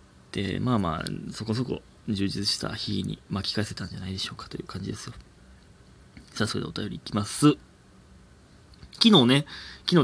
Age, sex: 20-39, male